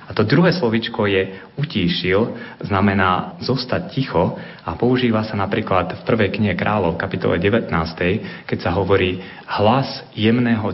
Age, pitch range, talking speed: 30-49, 90-120 Hz, 135 wpm